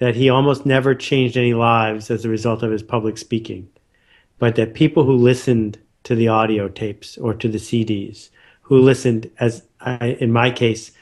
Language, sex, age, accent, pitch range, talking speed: English, male, 50-69, American, 110-125 Hz, 185 wpm